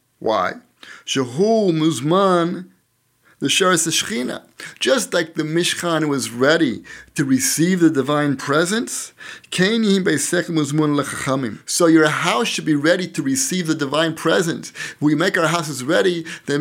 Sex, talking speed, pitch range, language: male, 125 wpm, 145-180 Hz, English